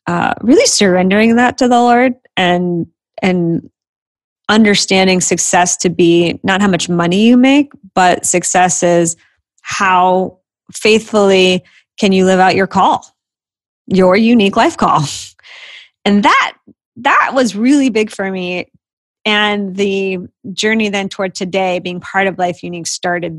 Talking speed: 140 wpm